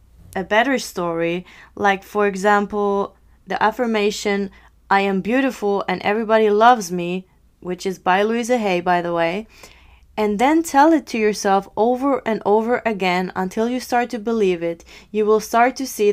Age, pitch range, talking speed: 20-39, 190-235 Hz, 165 wpm